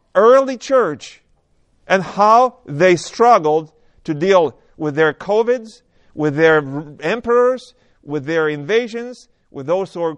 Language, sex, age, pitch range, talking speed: English, male, 40-59, 155-220 Hz, 125 wpm